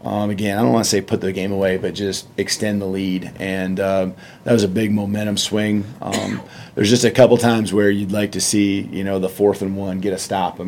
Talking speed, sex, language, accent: 255 wpm, male, English, American